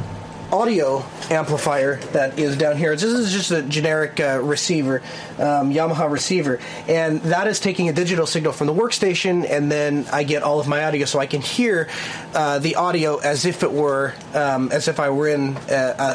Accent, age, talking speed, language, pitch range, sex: American, 30-49, 195 wpm, English, 140-170 Hz, male